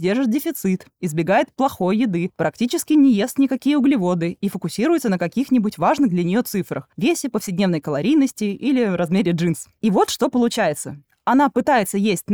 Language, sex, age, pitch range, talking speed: Russian, female, 20-39, 180-260 Hz, 150 wpm